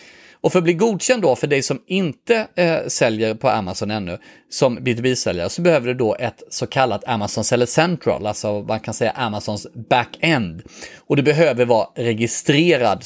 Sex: male